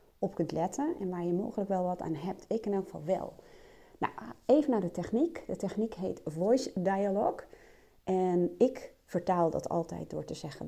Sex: female